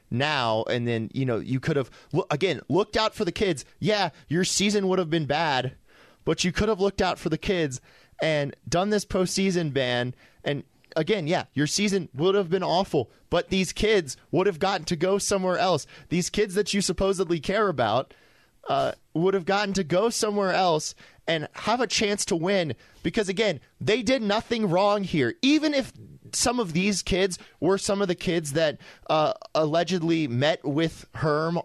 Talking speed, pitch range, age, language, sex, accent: 190 wpm, 145-195 Hz, 20-39, English, male, American